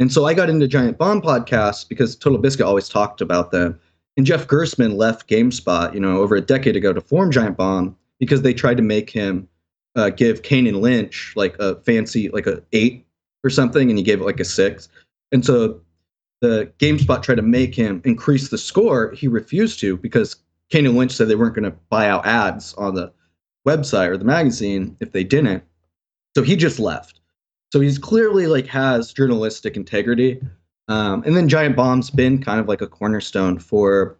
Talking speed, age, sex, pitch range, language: 195 wpm, 30-49, male, 95-130 Hz, English